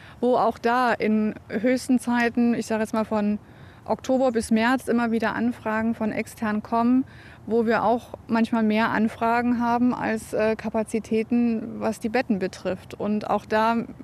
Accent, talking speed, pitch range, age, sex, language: German, 160 wpm, 215-240 Hz, 20-39, female, German